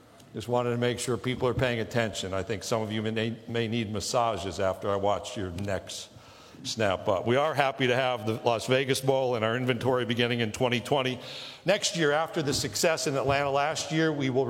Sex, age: male, 60-79